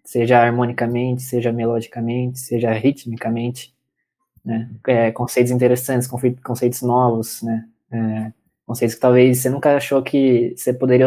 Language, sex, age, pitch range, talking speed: Portuguese, male, 20-39, 115-130 Hz, 125 wpm